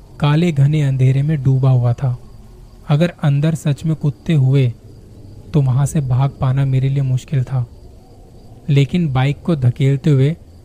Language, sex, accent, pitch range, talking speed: Hindi, male, native, 120-150 Hz, 150 wpm